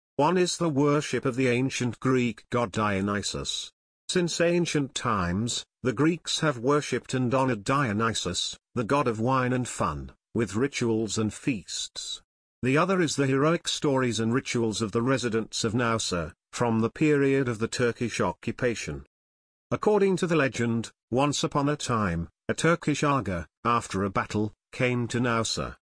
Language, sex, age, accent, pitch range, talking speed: Greek, male, 50-69, British, 115-145 Hz, 155 wpm